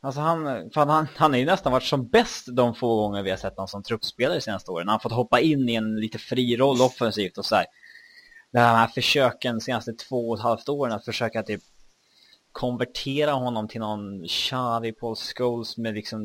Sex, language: male, Swedish